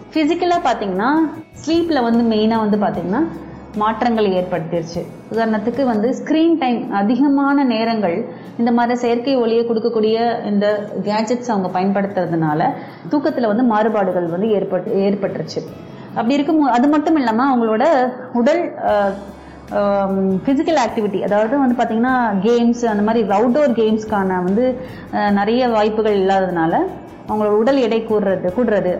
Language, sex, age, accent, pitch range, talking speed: Tamil, female, 30-49, native, 200-255 Hz, 115 wpm